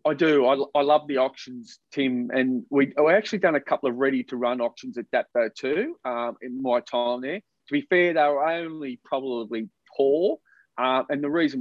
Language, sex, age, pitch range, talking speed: English, male, 40-59, 125-150 Hz, 195 wpm